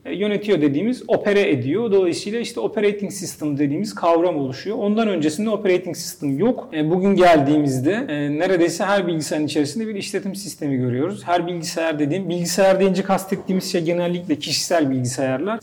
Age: 40-59